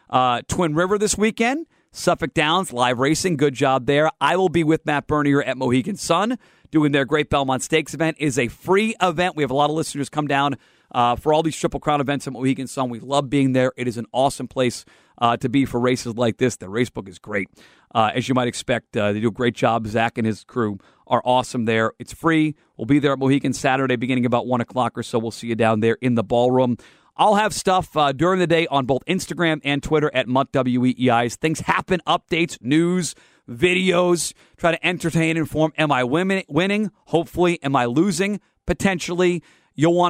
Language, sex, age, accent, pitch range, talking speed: English, male, 40-59, American, 130-180 Hz, 220 wpm